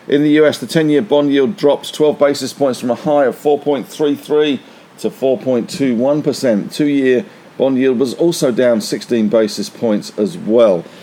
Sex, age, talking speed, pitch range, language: male, 50-69, 150 wpm, 105-130 Hz, English